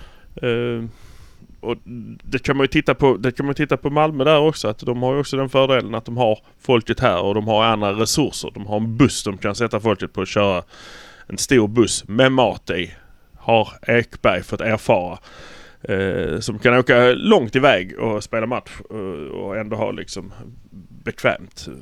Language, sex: Swedish, male